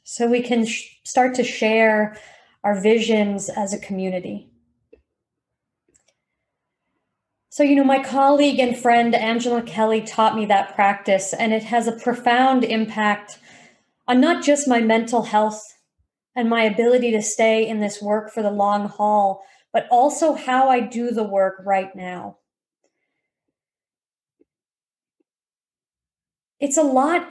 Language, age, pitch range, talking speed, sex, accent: English, 30-49, 210-260 Hz, 130 wpm, female, American